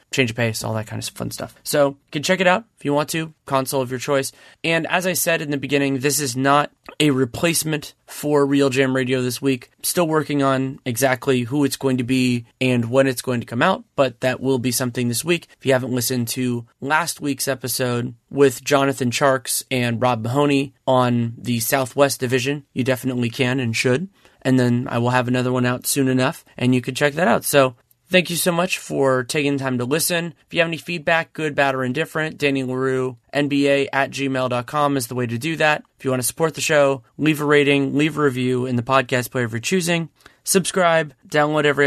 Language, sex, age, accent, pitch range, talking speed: English, male, 30-49, American, 125-145 Hz, 225 wpm